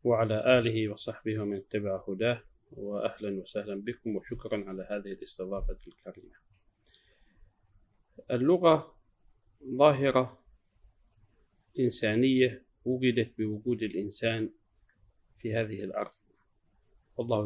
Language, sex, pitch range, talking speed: Arabic, male, 105-130 Hz, 85 wpm